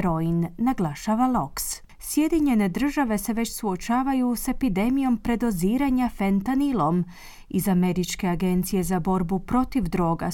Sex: female